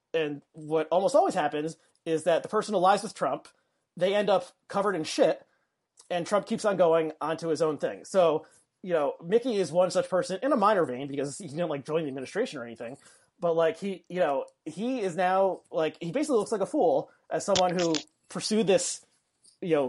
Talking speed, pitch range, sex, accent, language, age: 210 wpm, 155-195 Hz, male, American, English, 30-49